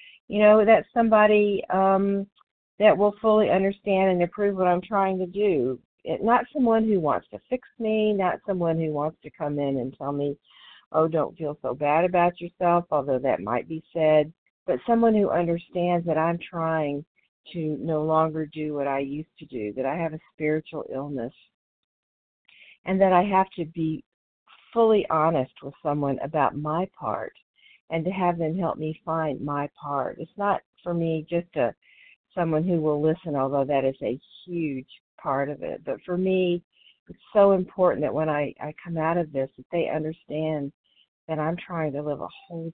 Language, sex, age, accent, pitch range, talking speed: English, female, 50-69, American, 150-190 Hz, 185 wpm